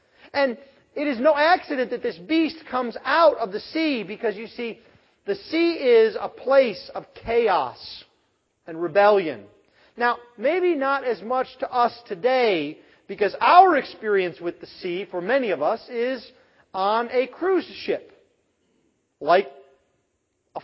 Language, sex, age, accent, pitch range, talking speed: English, male, 40-59, American, 230-345 Hz, 145 wpm